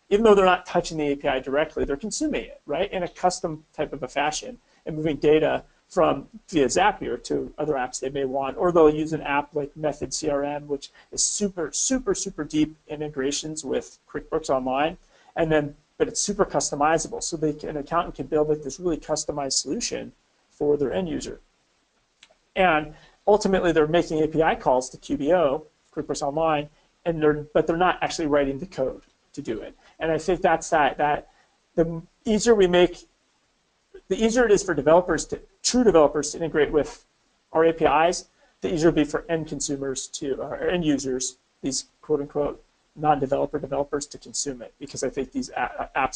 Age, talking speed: 40-59, 185 wpm